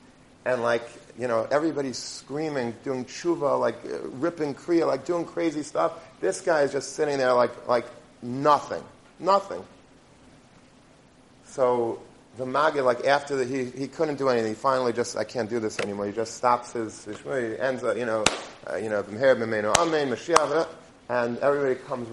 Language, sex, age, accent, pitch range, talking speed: English, male, 40-59, American, 120-145 Hz, 165 wpm